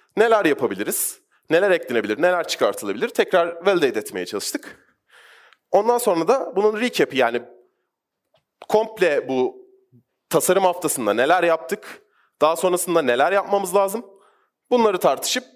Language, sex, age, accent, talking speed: Turkish, male, 30-49, native, 110 wpm